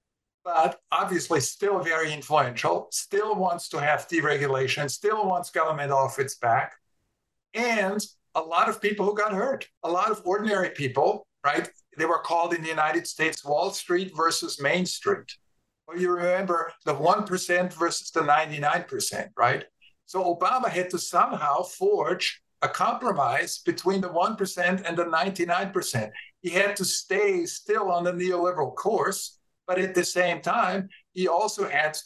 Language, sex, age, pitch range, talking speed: English, male, 50-69, 170-210 Hz, 155 wpm